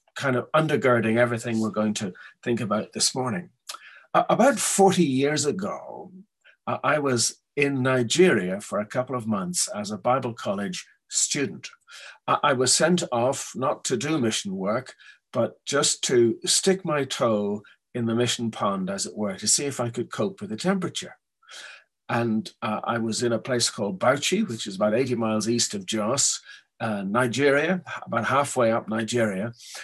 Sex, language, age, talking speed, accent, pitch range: male, English, 50-69, 170 wpm, British, 115-165 Hz